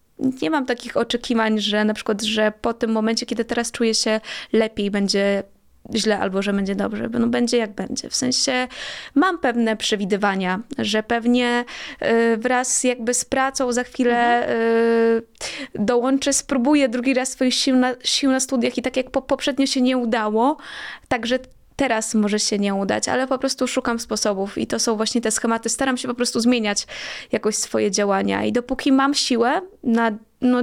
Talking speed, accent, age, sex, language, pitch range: 175 wpm, native, 20-39, female, Polish, 215-265 Hz